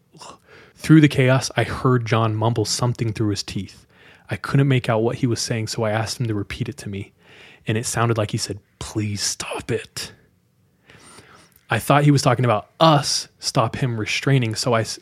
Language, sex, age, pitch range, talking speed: English, male, 20-39, 105-130 Hz, 195 wpm